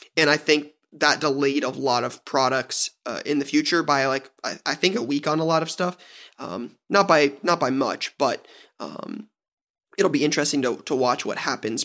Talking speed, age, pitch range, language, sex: 210 wpm, 20-39, 135-160 Hz, English, male